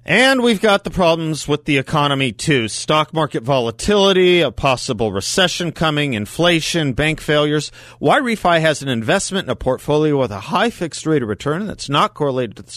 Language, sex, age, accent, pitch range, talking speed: English, male, 40-59, American, 100-150 Hz, 185 wpm